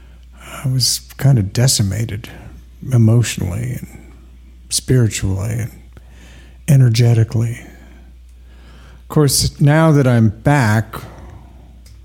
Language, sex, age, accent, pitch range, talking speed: English, male, 50-69, American, 75-120 Hz, 80 wpm